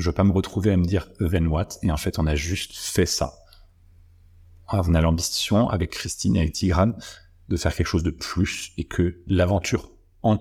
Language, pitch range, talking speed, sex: French, 85-95 Hz, 220 wpm, male